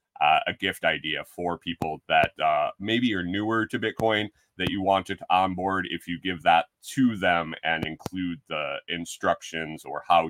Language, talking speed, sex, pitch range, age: English, 175 wpm, male, 90-115 Hz, 30-49